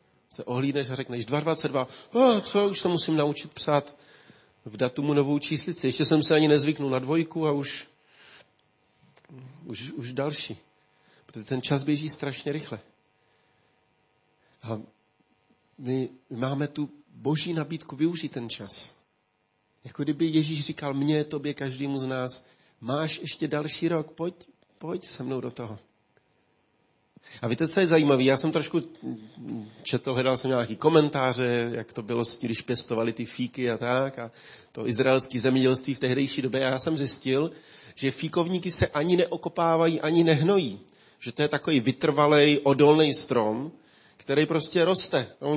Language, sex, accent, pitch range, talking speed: Czech, male, native, 130-160 Hz, 150 wpm